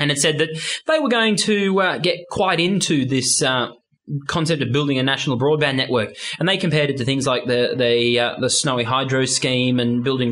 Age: 20-39